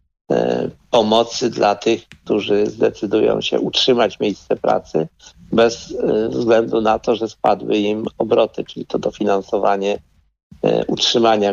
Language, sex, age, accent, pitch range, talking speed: Polish, male, 50-69, native, 100-115 Hz, 110 wpm